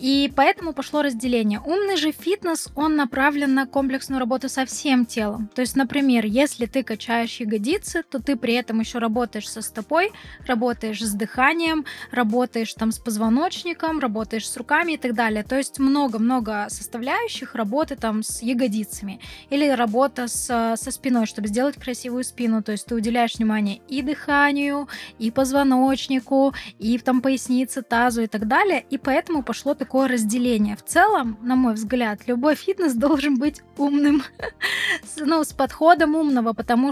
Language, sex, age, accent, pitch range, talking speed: Russian, female, 20-39, native, 225-280 Hz, 160 wpm